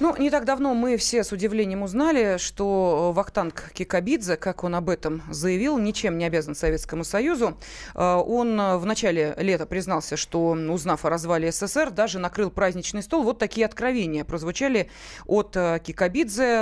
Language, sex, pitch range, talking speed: Russian, female, 175-235 Hz, 150 wpm